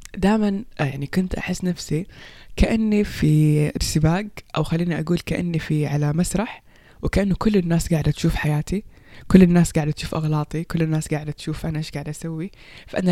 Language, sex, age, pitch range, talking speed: Persian, female, 20-39, 155-195 Hz, 160 wpm